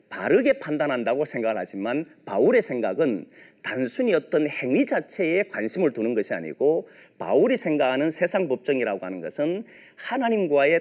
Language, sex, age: Korean, male, 40-59